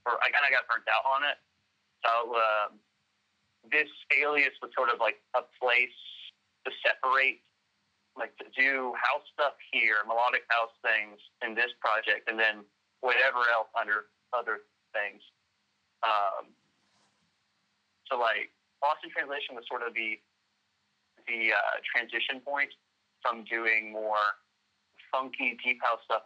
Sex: male